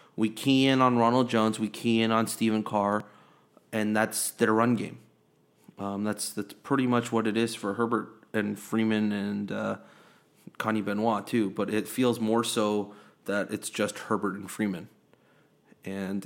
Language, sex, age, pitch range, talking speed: English, male, 30-49, 105-130 Hz, 170 wpm